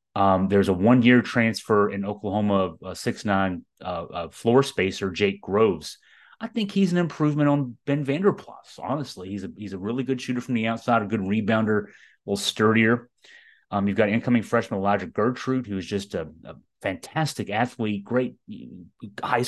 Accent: American